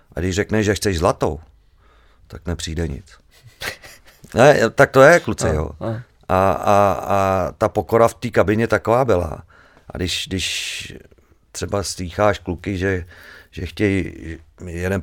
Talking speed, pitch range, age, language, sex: 140 wpm, 85-105 Hz, 50-69, English, male